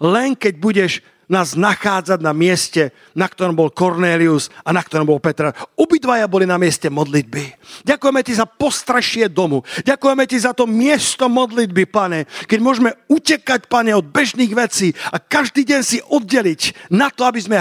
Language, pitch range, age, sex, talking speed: Slovak, 175-235 Hz, 50-69, male, 165 wpm